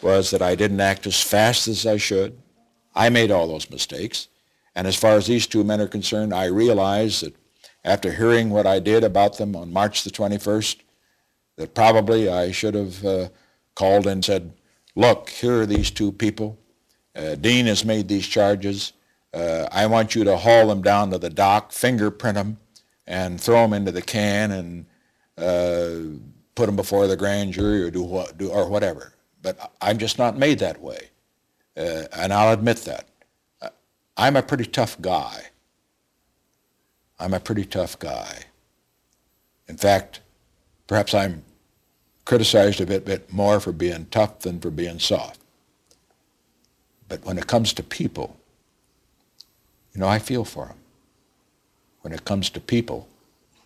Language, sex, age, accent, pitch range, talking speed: English, male, 60-79, American, 90-110 Hz, 160 wpm